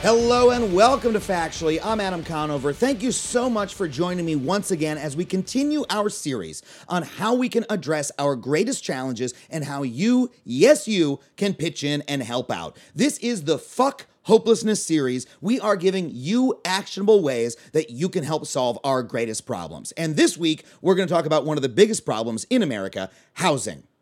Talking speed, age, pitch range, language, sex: 190 wpm, 30-49, 145-215 Hz, English, male